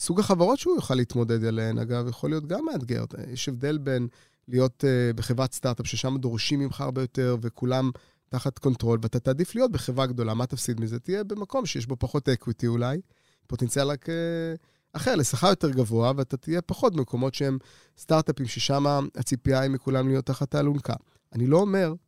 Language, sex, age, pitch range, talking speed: Hebrew, male, 30-49, 120-160 Hz, 165 wpm